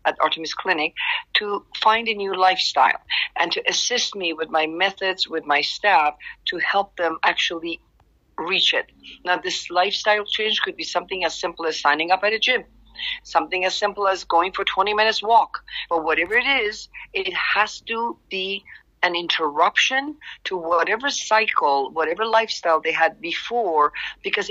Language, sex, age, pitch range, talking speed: Persian, female, 50-69, 160-210 Hz, 165 wpm